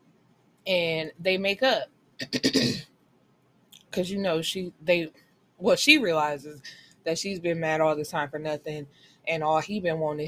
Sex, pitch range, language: female, 150-190 Hz, English